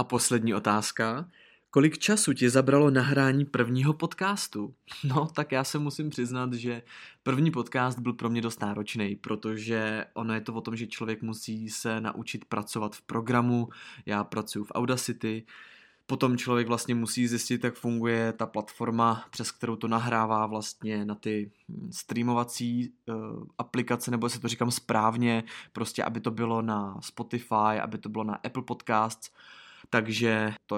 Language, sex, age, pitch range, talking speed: Czech, male, 20-39, 110-125 Hz, 155 wpm